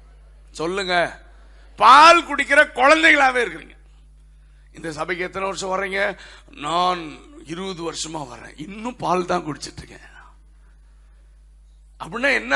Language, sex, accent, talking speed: Tamil, male, native, 70 wpm